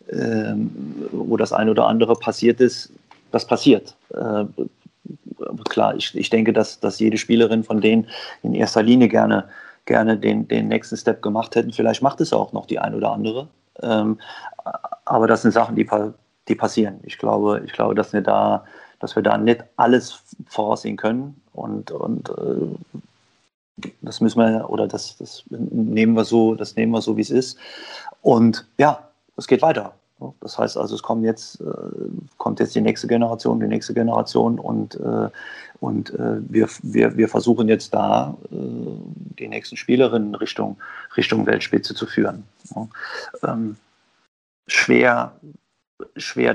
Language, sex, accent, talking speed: German, male, German, 155 wpm